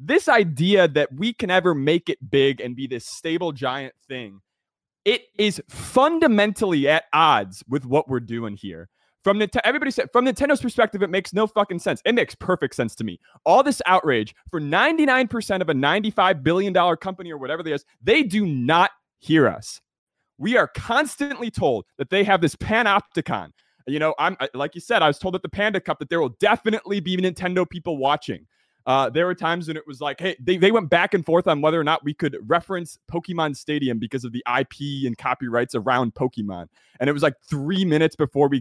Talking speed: 205 wpm